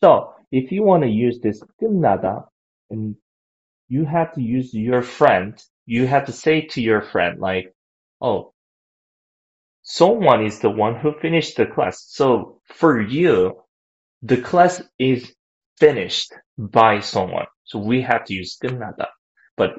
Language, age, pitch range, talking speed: English, 20-39, 95-130 Hz, 145 wpm